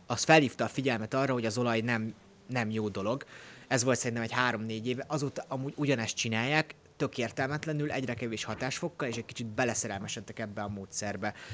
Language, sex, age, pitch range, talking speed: Hungarian, male, 30-49, 110-140 Hz, 180 wpm